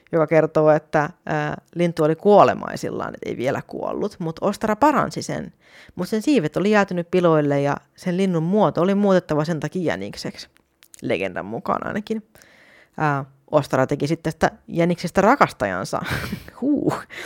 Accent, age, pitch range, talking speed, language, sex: native, 30-49, 155-215 Hz, 135 wpm, Finnish, female